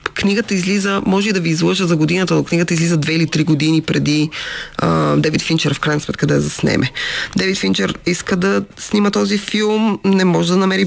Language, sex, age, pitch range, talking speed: Bulgarian, female, 20-39, 150-180 Hz, 205 wpm